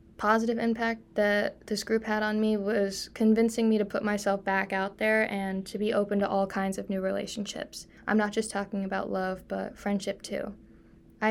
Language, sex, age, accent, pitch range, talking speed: English, female, 10-29, American, 195-220 Hz, 195 wpm